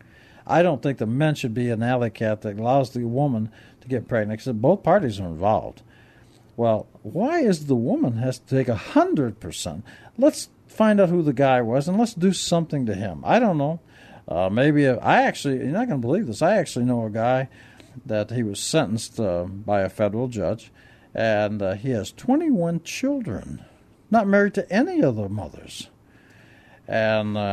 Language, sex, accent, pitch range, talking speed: English, male, American, 115-180 Hz, 185 wpm